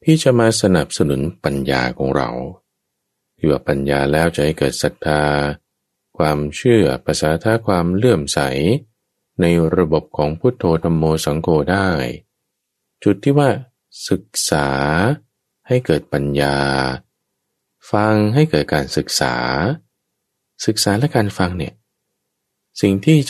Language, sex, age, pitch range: English, male, 20-39, 70-115 Hz